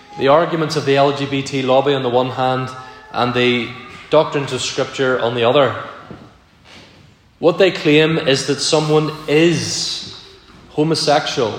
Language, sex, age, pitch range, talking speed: English, male, 20-39, 125-155 Hz, 135 wpm